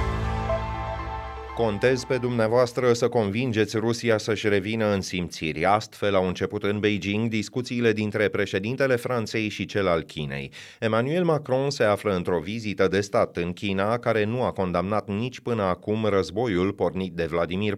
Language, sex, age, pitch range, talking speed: Romanian, male, 30-49, 90-110 Hz, 150 wpm